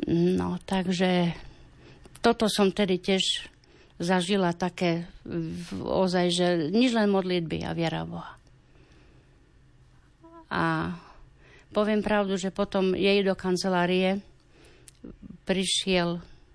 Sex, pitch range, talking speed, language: female, 170-190 Hz, 90 wpm, Slovak